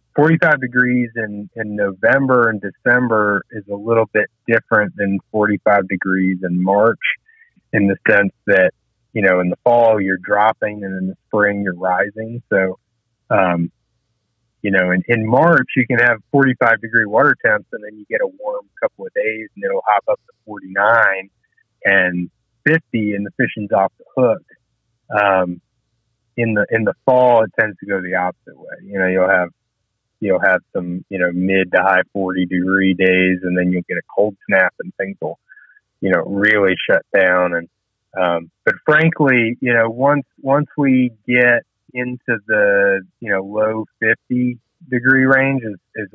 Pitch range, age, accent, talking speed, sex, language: 95-125 Hz, 30-49, American, 175 wpm, male, English